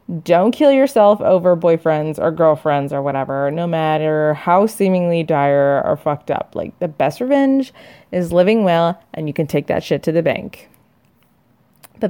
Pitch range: 160-200 Hz